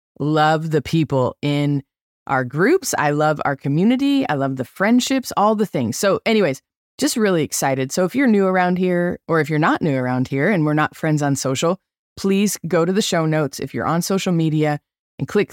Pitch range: 140-185 Hz